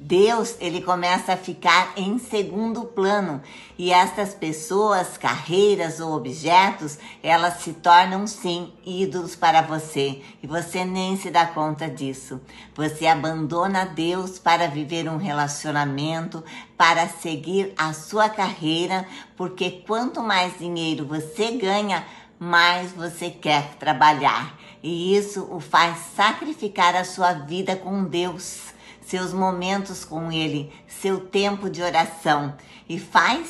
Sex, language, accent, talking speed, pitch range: female, Portuguese, Brazilian, 125 wpm, 165-205 Hz